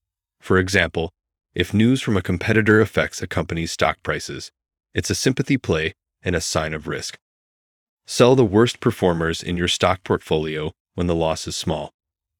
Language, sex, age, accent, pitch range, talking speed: English, male, 30-49, American, 80-105 Hz, 165 wpm